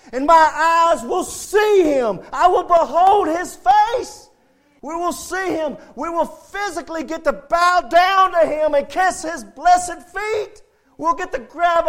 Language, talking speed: English, 165 wpm